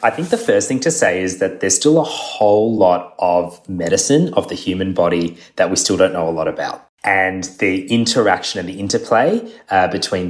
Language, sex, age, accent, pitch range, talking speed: English, male, 20-39, Australian, 90-130 Hz, 210 wpm